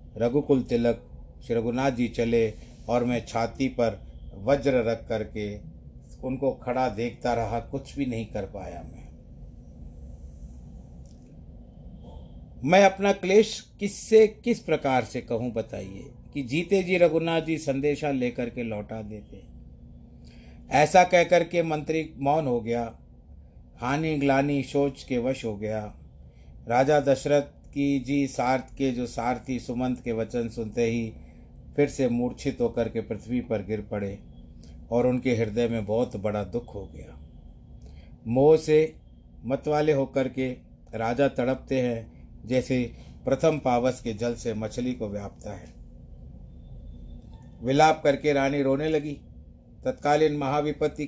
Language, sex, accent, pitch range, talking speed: Hindi, male, native, 100-140 Hz, 130 wpm